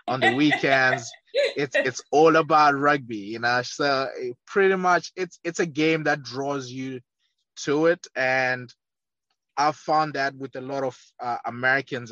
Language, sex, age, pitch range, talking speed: English, male, 20-39, 115-135 Hz, 160 wpm